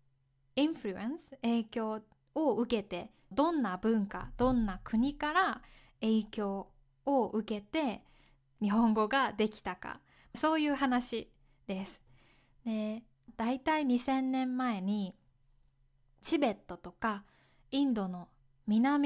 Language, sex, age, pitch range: Japanese, female, 20-39, 190-255 Hz